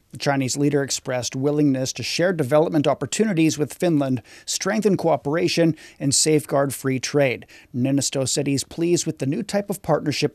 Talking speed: 155 wpm